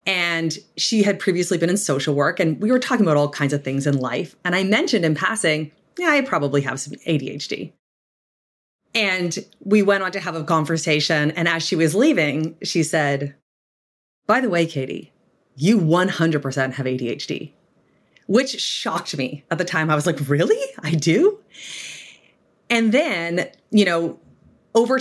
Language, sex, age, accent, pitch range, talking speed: English, female, 30-49, American, 155-215 Hz, 170 wpm